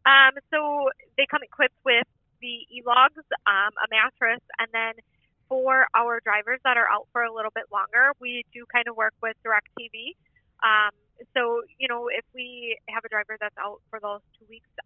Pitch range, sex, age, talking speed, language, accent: 205-240 Hz, female, 20-39, 190 wpm, English, American